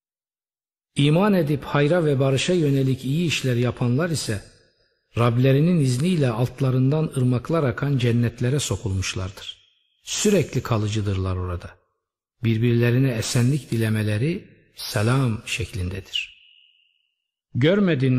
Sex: male